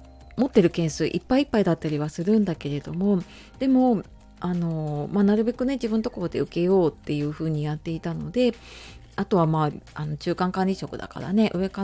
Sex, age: female, 30-49